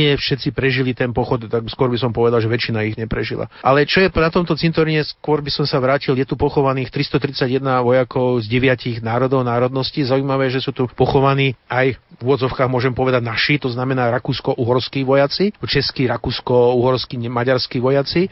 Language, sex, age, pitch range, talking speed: Slovak, male, 40-59, 120-140 Hz, 175 wpm